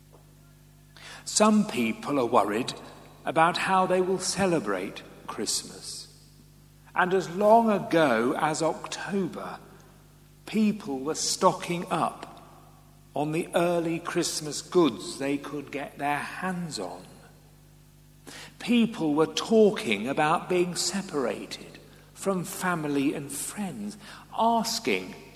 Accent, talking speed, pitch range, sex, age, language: British, 100 wpm, 145-190 Hz, male, 50-69, English